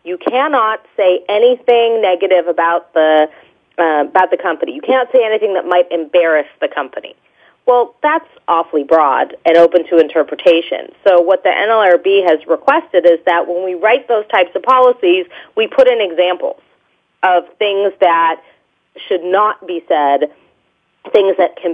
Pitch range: 165-205 Hz